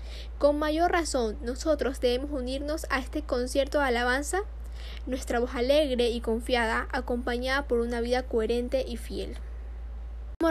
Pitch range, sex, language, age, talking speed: 240-270 Hz, female, Spanish, 10-29, 135 wpm